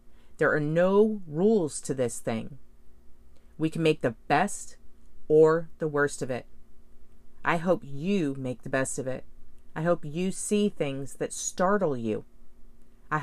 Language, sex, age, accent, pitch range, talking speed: English, female, 40-59, American, 125-185 Hz, 155 wpm